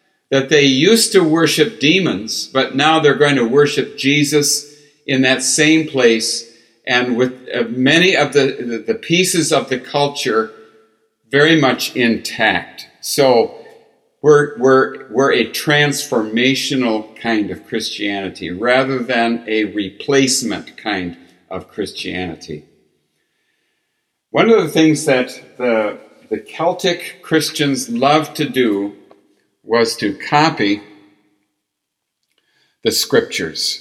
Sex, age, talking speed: male, 60-79, 110 wpm